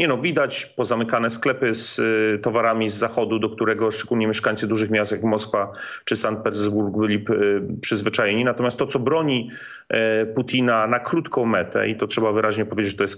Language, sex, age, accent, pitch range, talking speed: Polish, male, 30-49, native, 105-115 Hz, 185 wpm